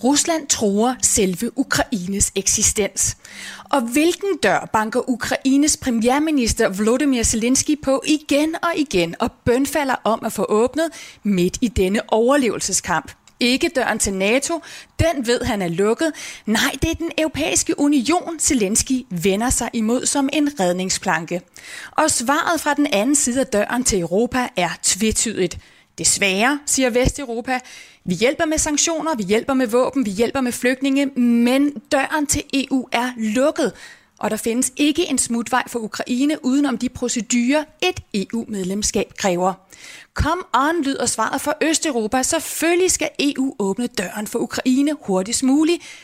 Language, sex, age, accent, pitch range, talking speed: Danish, female, 30-49, native, 220-290 Hz, 145 wpm